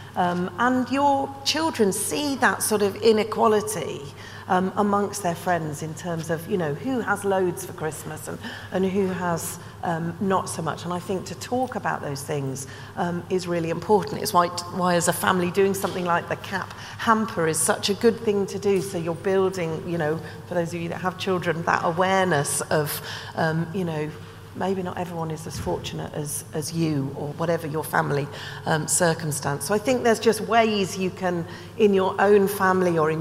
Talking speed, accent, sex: 195 wpm, British, female